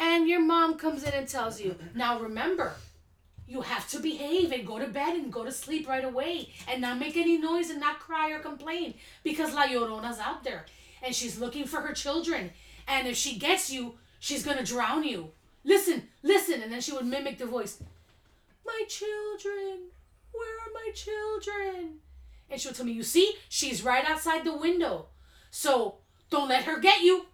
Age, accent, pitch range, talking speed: 30-49, American, 255-340 Hz, 195 wpm